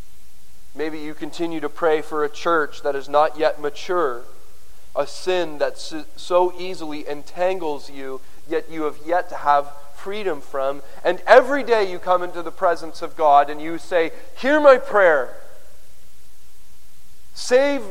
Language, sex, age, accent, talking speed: English, male, 40-59, American, 150 wpm